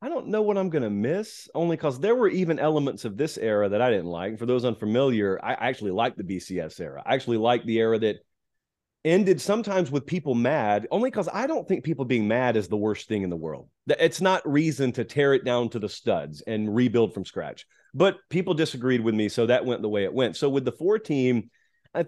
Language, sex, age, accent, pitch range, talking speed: English, male, 30-49, American, 115-150 Hz, 240 wpm